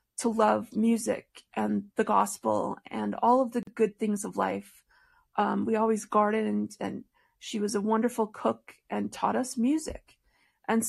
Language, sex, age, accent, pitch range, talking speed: English, female, 40-59, American, 215-245 Hz, 165 wpm